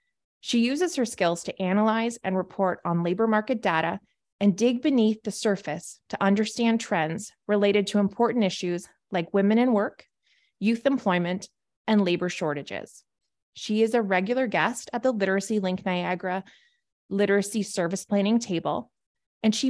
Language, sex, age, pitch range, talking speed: English, female, 20-39, 190-235 Hz, 150 wpm